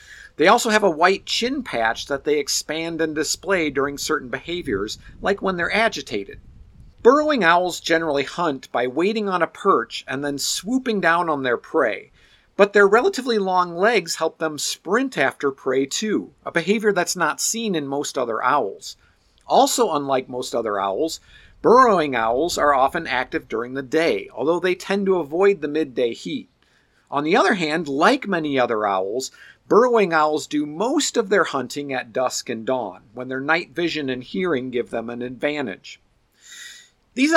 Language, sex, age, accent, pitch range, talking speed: English, male, 50-69, American, 145-205 Hz, 170 wpm